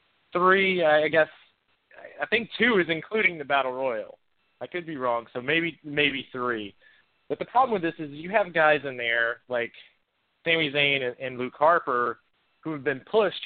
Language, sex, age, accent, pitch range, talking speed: English, male, 30-49, American, 120-160 Hz, 180 wpm